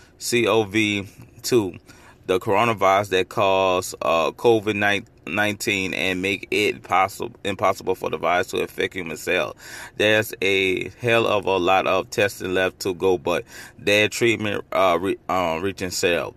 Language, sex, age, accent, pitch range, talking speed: English, male, 30-49, American, 95-115 Hz, 145 wpm